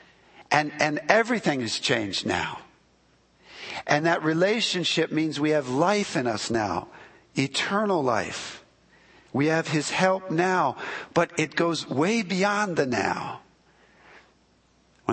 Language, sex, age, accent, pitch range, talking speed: English, male, 50-69, American, 120-160 Hz, 125 wpm